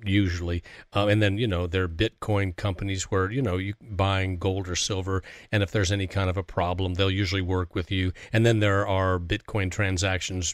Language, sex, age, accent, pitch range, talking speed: English, male, 40-59, American, 95-110 Hz, 210 wpm